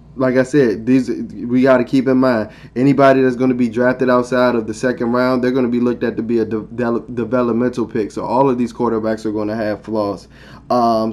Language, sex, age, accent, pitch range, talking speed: English, male, 20-39, American, 115-130 Hz, 245 wpm